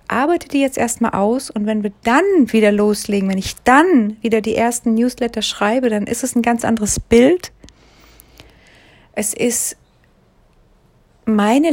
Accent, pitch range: German, 215-260 Hz